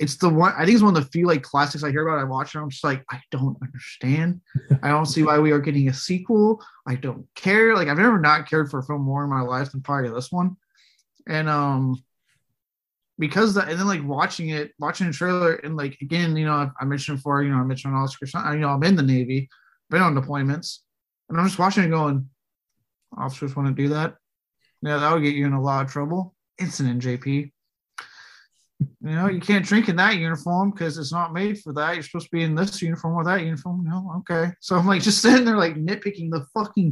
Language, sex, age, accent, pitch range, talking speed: English, male, 20-39, American, 140-175 Hz, 240 wpm